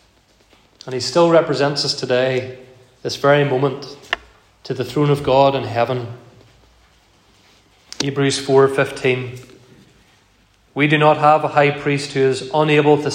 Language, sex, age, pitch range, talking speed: English, male, 30-49, 125-150 Hz, 135 wpm